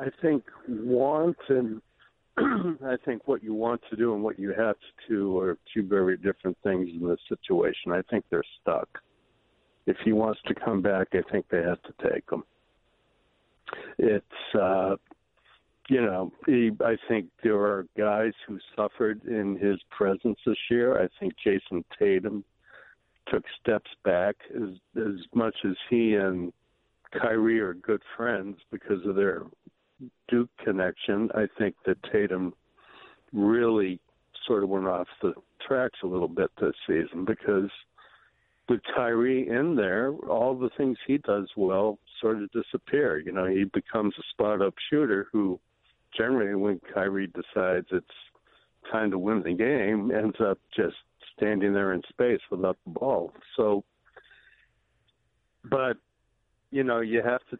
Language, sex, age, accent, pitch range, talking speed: English, male, 60-79, American, 100-120 Hz, 150 wpm